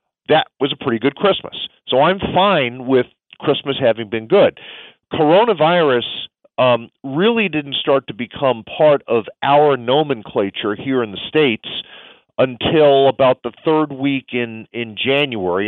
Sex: male